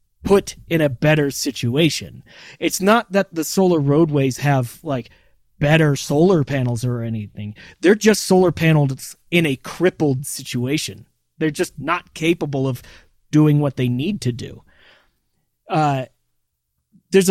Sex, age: male, 30-49